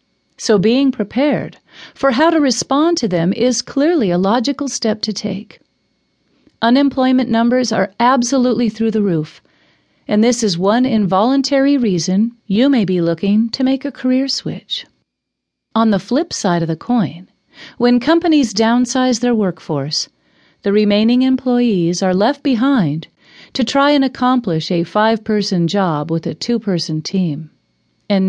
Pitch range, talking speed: 190-255 Hz, 145 wpm